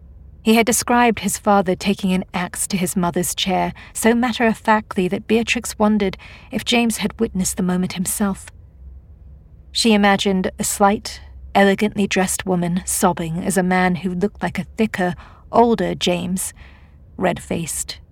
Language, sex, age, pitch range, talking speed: English, female, 40-59, 165-200 Hz, 140 wpm